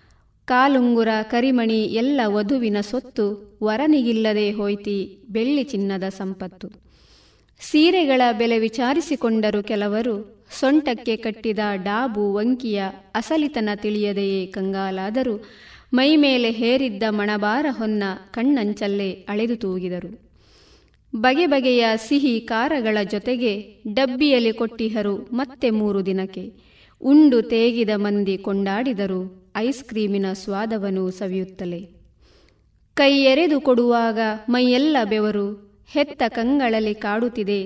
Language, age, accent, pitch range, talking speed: Kannada, 30-49, native, 200-250 Hz, 80 wpm